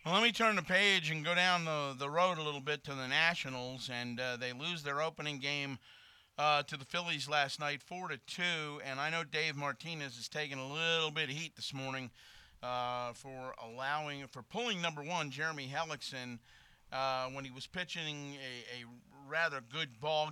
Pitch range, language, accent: 135-165 Hz, English, American